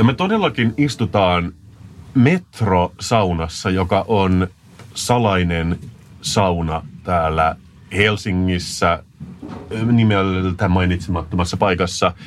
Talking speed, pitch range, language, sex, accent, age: 75 wpm, 90-115 Hz, Finnish, male, native, 30-49